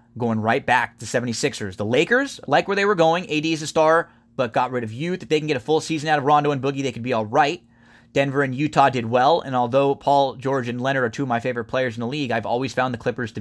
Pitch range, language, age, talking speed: 115-155 Hz, English, 20-39, 280 wpm